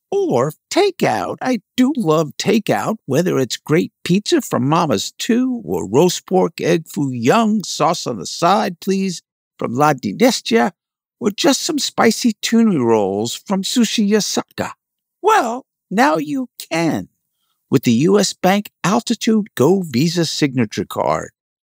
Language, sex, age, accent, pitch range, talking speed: English, male, 60-79, American, 165-225 Hz, 135 wpm